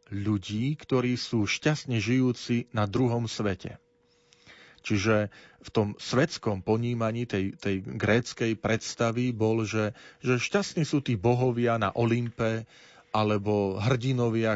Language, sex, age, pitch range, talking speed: Slovak, male, 40-59, 105-125 Hz, 115 wpm